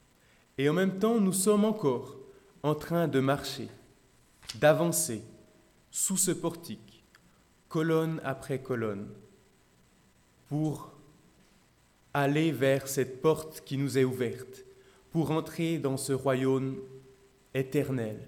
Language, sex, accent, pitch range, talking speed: French, male, French, 125-160 Hz, 110 wpm